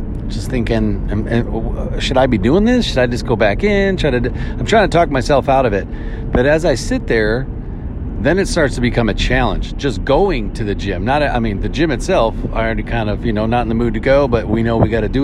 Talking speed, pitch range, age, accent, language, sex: 255 wpm, 100-125 Hz, 40-59, American, English, male